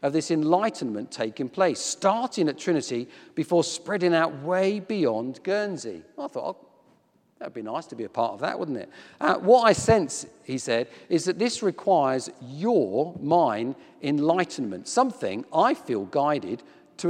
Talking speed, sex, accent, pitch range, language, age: 160 wpm, male, British, 130-190 Hz, English, 50-69